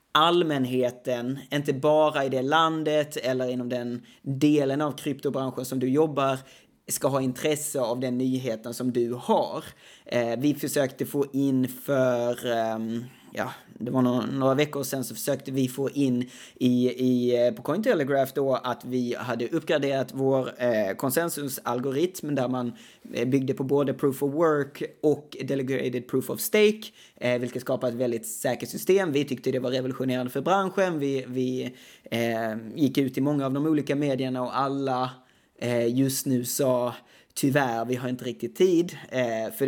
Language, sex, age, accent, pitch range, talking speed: English, male, 20-39, Swedish, 125-145 Hz, 160 wpm